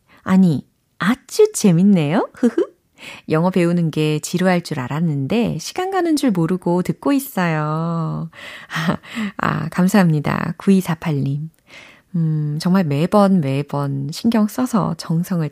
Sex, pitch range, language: female, 155-225 Hz, Korean